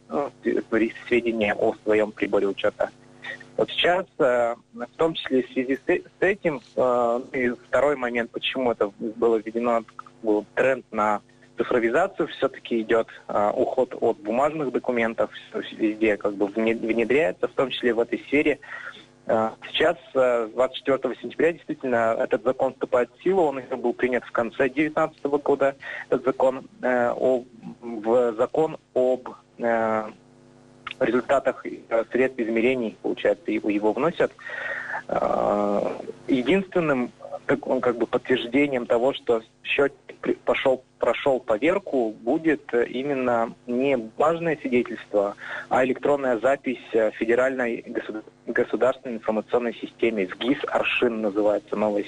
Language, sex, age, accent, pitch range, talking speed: Russian, male, 20-39, native, 115-130 Hz, 110 wpm